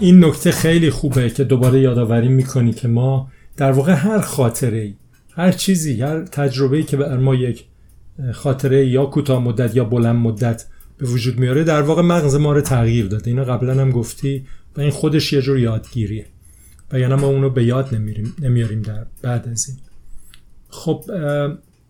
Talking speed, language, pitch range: 170 wpm, Persian, 120-150 Hz